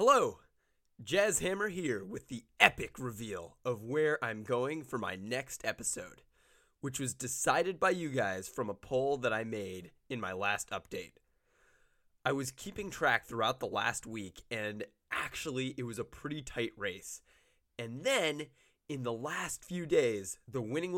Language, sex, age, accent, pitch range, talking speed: English, male, 20-39, American, 115-175 Hz, 165 wpm